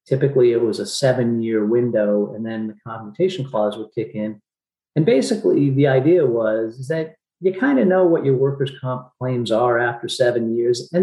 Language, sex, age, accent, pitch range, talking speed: English, male, 40-59, American, 115-150 Hz, 185 wpm